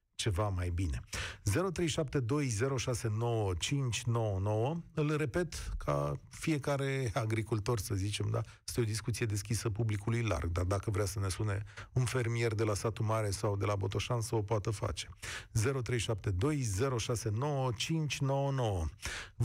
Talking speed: 120 wpm